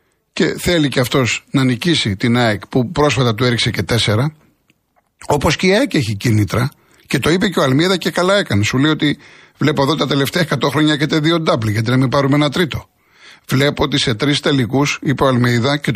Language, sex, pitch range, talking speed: Greek, male, 115-155 Hz, 215 wpm